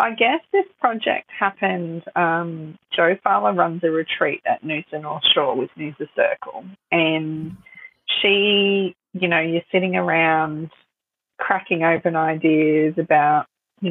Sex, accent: female, Australian